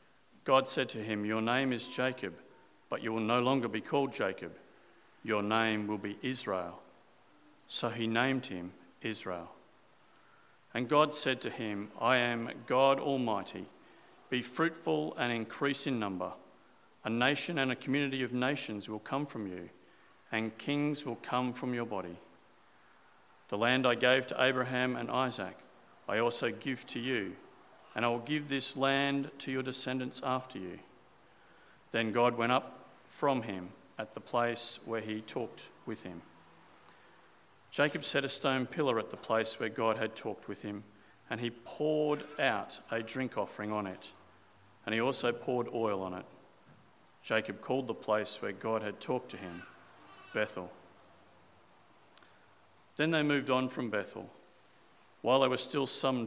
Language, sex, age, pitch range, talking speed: English, male, 50-69, 110-130 Hz, 160 wpm